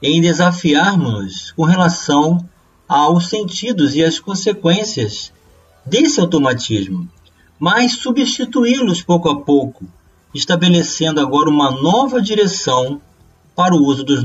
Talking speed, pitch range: 105 wpm, 125-195 Hz